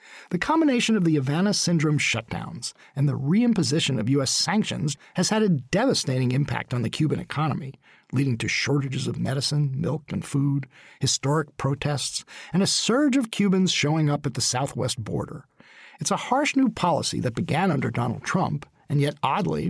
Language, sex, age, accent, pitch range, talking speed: English, male, 50-69, American, 135-200 Hz, 170 wpm